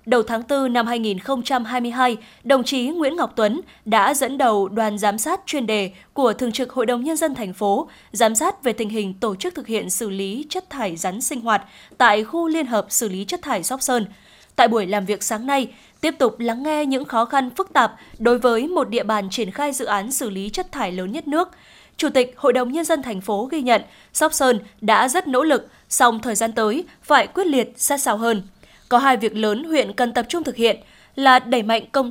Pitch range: 220-275 Hz